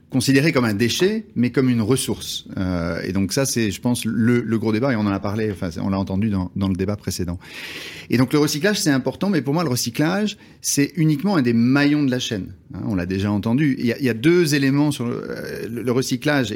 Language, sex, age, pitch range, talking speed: French, male, 30-49, 105-145 Hz, 245 wpm